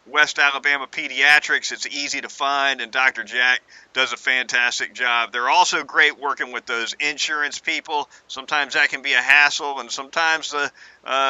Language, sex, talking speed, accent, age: English, male, 170 wpm, American, 40-59